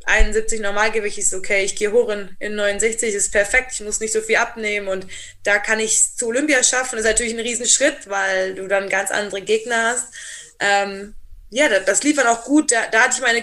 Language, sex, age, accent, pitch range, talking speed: German, female, 20-39, German, 205-245 Hz, 230 wpm